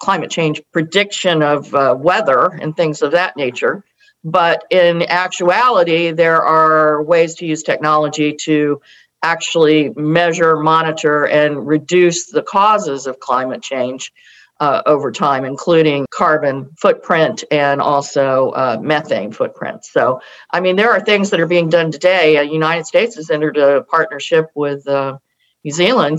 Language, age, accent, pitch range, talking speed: English, 50-69, American, 150-175 Hz, 145 wpm